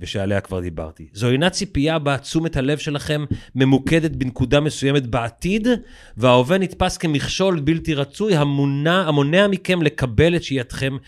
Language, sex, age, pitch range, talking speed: Hebrew, male, 40-59, 110-155 Hz, 125 wpm